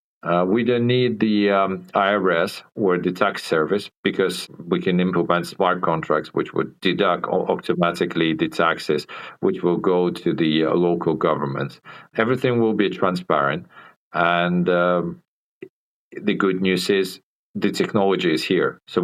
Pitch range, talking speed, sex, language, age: 85-105 Hz, 145 wpm, male, English, 40-59